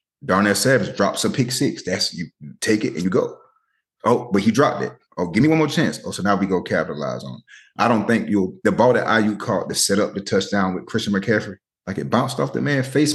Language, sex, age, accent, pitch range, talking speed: English, male, 30-49, American, 90-120 Hz, 255 wpm